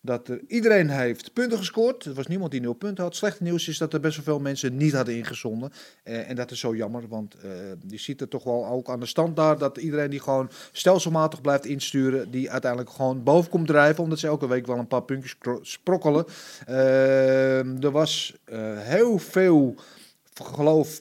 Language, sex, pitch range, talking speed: Dutch, male, 125-160 Hz, 210 wpm